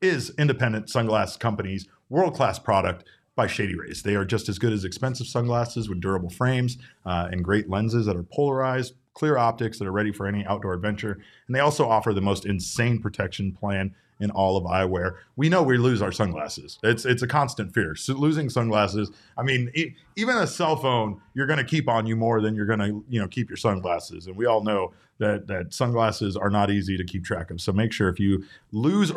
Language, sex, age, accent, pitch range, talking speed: English, male, 30-49, American, 95-120 Hz, 220 wpm